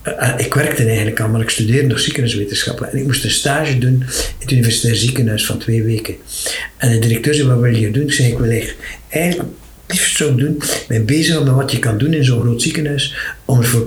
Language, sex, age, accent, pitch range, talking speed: Dutch, male, 60-79, Dutch, 120-150 Hz, 240 wpm